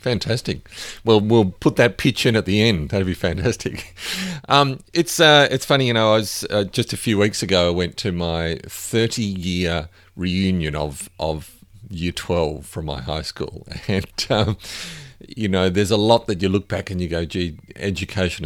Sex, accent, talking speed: male, Australian, 190 wpm